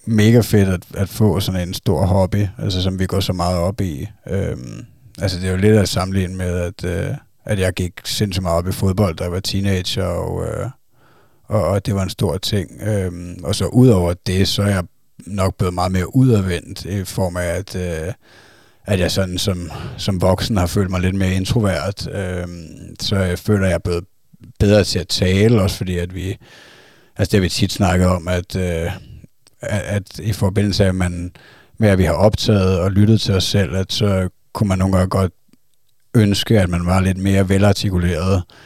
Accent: native